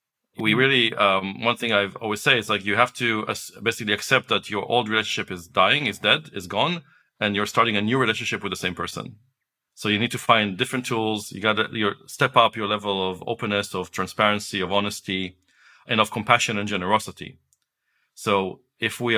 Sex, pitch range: male, 100-120 Hz